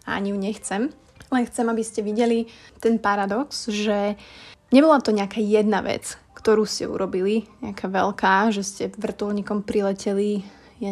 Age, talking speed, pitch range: 20-39, 150 wpm, 200-225 Hz